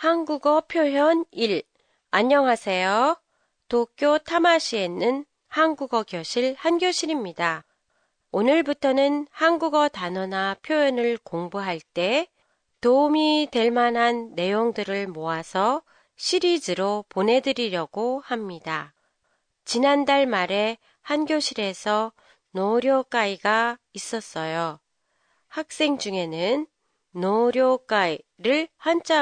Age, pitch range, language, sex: 40-59, 190-290 Hz, Japanese, female